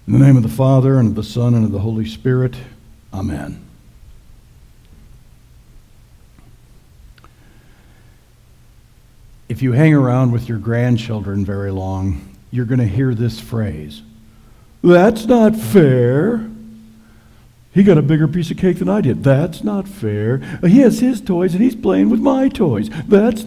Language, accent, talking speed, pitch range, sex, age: English, American, 150 wpm, 110-150 Hz, male, 60-79